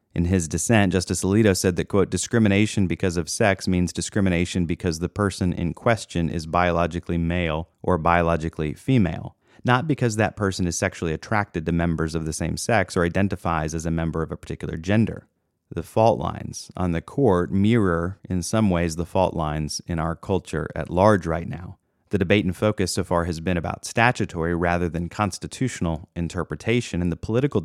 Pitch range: 85-100 Hz